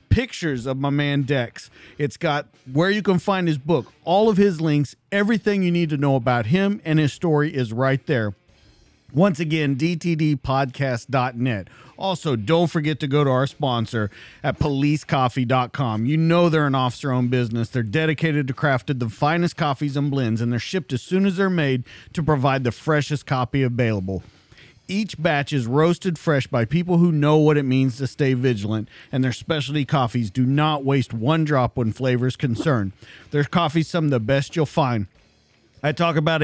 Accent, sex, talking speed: American, male, 185 wpm